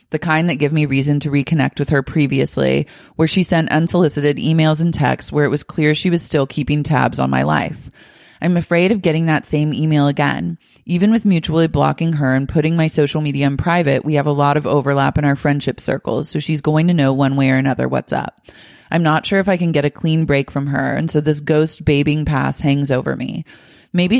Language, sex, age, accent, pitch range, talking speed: English, female, 20-39, American, 145-165 Hz, 230 wpm